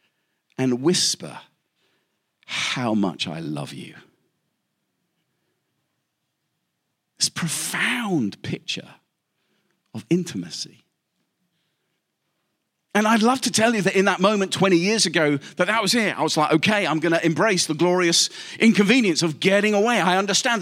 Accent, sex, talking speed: British, male, 130 wpm